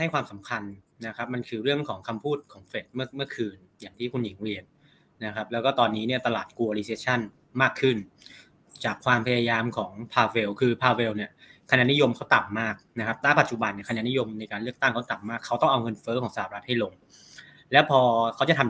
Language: Thai